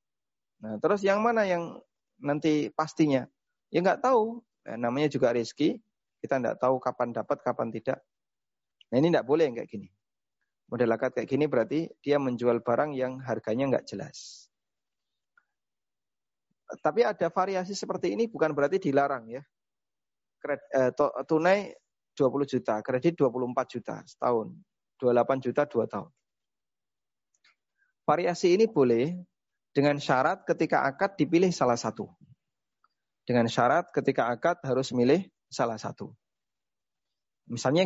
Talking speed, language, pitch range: 130 wpm, Indonesian, 125-180 Hz